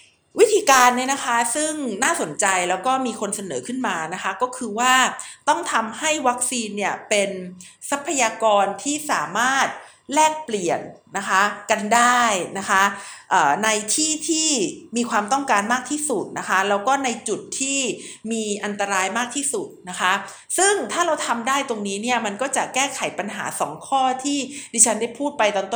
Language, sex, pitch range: Thai, female, 205-275 Hz